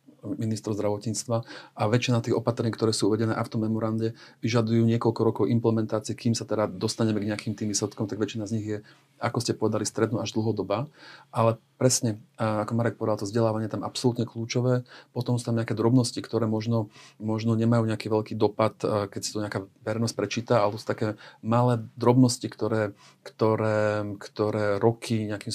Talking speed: 175 wpm